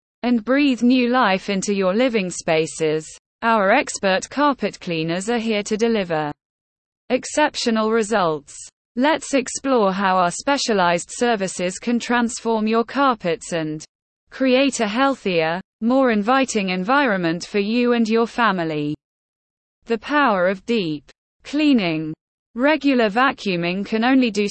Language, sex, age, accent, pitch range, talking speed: English, female, 20-39, British, 180-250 Hz, 120 wpm